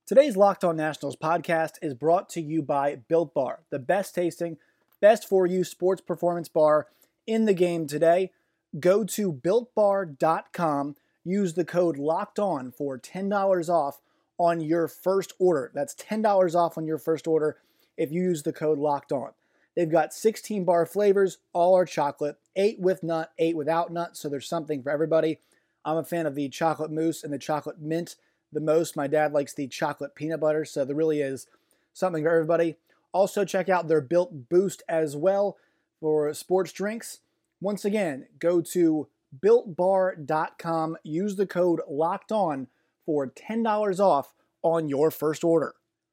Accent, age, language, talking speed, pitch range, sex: American, 30-49, English, 165 wpm, 155-185 Hz, male